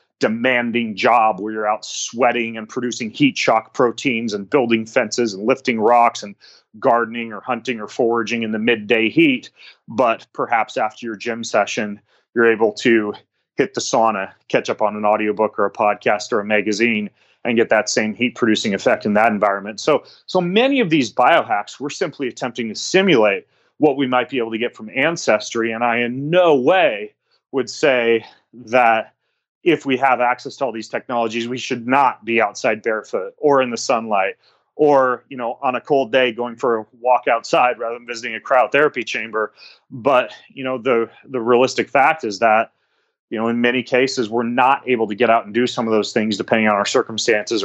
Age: 30-49